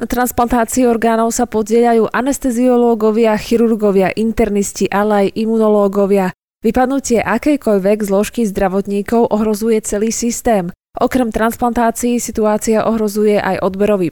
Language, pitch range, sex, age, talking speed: Slovak, 195-240 Hz, female, 20-39, 100 wpm